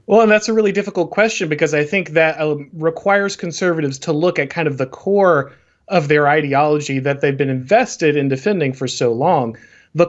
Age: 30-49